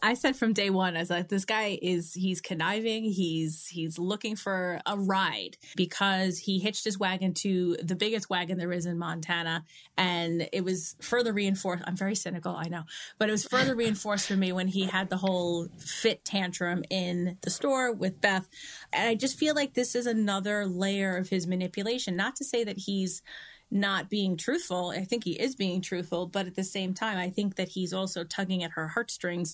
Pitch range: 180-210 Hz